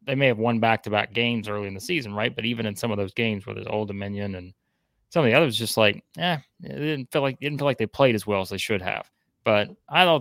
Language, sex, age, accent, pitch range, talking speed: English, male, 20-39, American, 100-120 Hz, 280 wpm